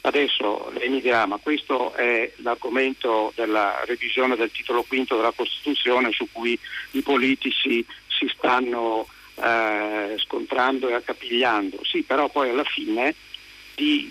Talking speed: 130 wpm